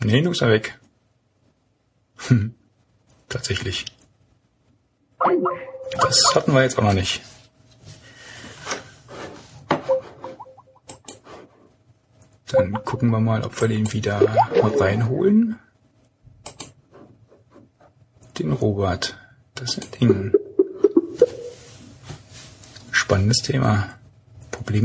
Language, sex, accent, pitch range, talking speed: German, male, German, 110-130 Hz, 75 wpm